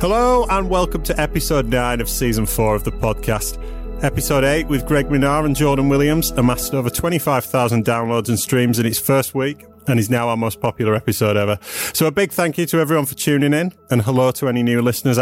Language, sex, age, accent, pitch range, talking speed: English, male, 30-49, British, 115-145 Hz, 215 wpm